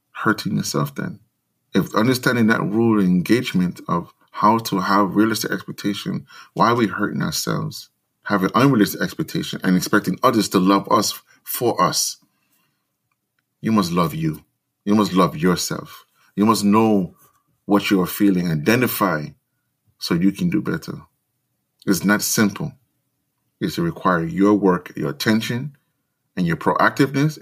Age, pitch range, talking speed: 30-49, 100-135 Hz, 140 wpm